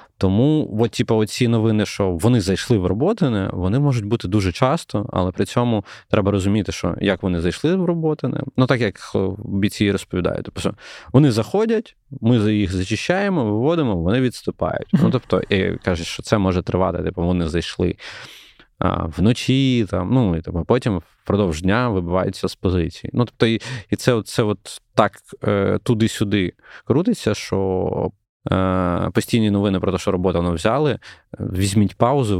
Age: 20-39